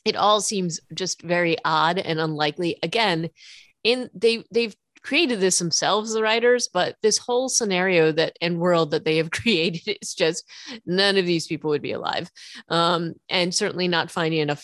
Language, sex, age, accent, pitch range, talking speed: English, female, 30-49, American, 155-195 Hz, 175 wpm